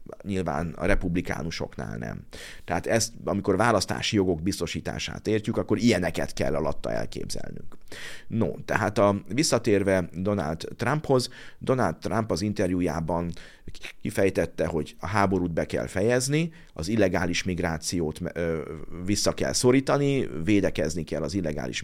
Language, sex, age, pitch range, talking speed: Hungarian, male, 50-69, 80-110 Hz, 120 wpm